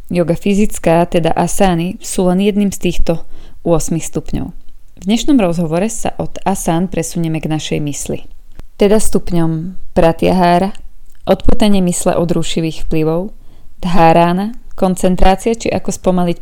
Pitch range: 165-195 Hz